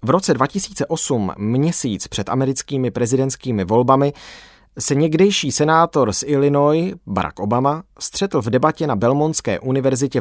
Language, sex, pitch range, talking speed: Czech, male, 115-155 Hz, 125 wpm